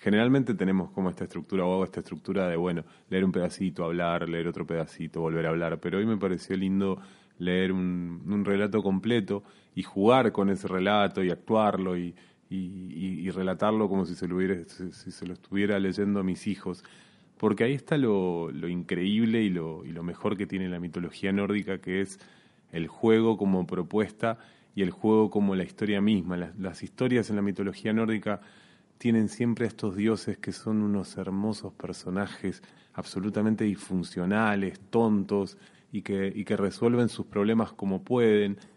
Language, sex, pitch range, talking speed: Spanish, male, 95-105 Hz, 175 wpm